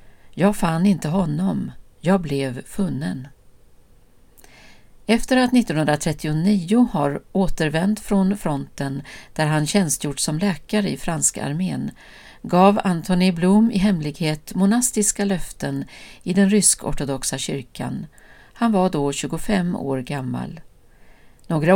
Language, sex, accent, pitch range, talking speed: Swedish, female, native, 145-205 Hz, 110 wpm